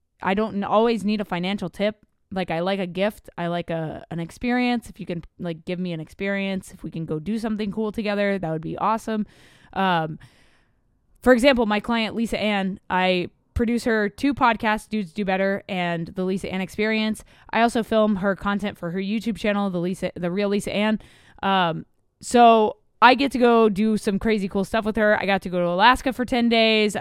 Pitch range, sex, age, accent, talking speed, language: 180-220 Hz, female, 20-39, American, 210 wpm, English